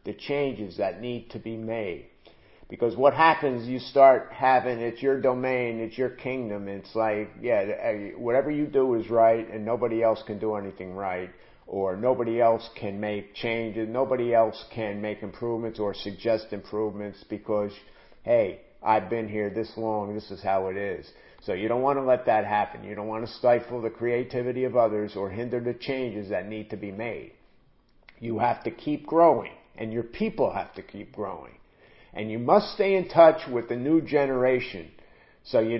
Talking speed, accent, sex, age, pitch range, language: 185 wpm, American, male, 50-69, 110-135 Hz, English